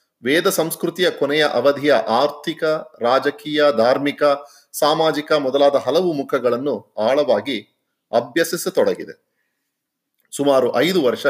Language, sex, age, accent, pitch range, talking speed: Kannada, male, 30-49, native, 135-175 Hz, 85 wpm